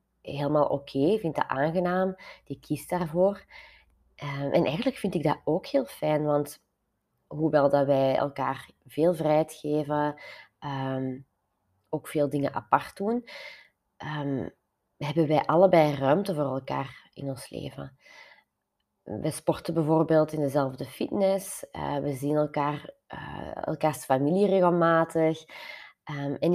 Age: 20-39